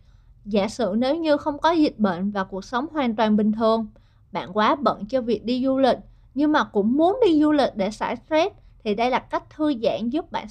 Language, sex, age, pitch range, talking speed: Vietnamese, female, 20-39, 220-305 Hz, 235 wpm